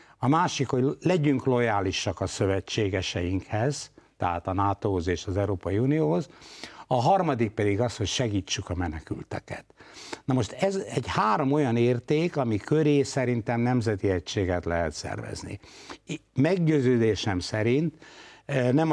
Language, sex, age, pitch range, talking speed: Hungarian, male, 60-79, 100-145 Hz, 125 wpm